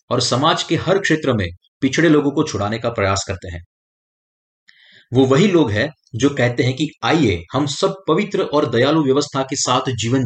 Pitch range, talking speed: 110-150 Hz, 185 wpm